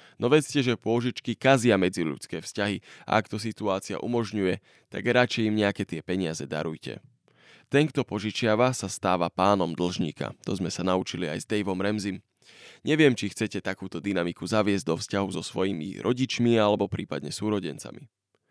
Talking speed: 155 wpm